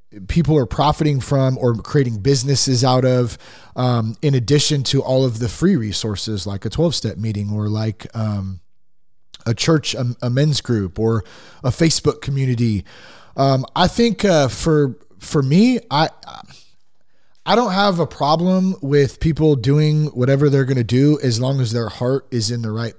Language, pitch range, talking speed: English, 115-140 Hz, 170 wpm